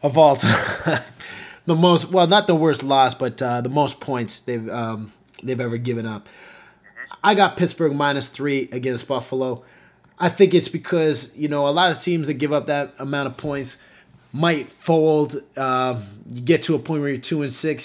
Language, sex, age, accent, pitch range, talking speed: English, male, 20-39, American, 130-155 Hz, 195 wpm